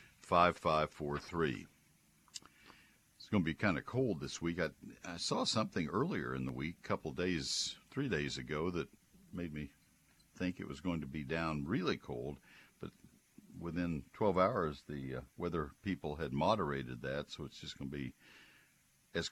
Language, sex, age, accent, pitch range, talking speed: English, male, 60-79, American, 70-85 Hz, 170 wpm